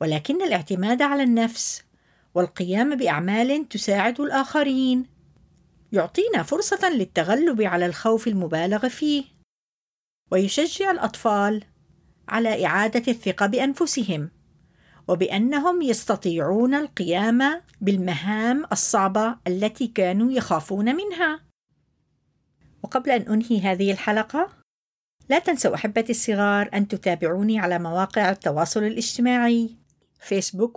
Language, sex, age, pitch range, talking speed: Arabic, female, 50-69, 185-250 Hz, 90 wpm